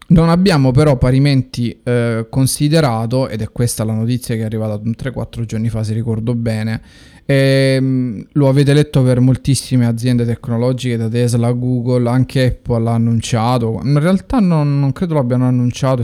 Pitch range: 115-130 Hz